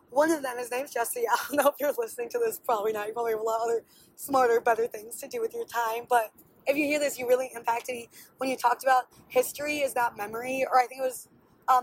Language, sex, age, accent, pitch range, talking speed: English, female, 20-39, American, 240-300 Hz, 275 wpm